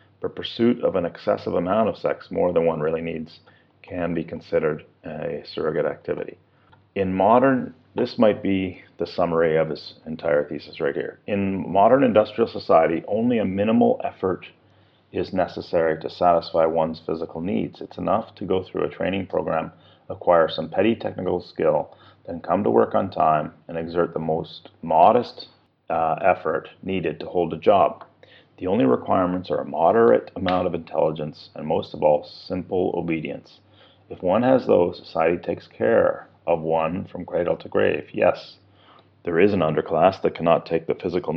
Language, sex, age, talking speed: English, male, 40-59, 170 wpm